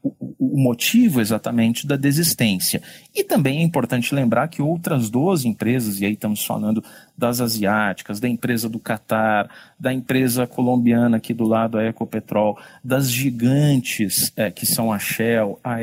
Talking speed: 150 wpm